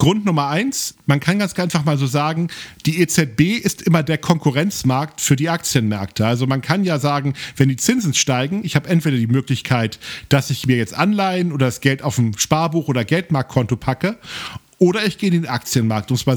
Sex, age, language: male, 40-59, German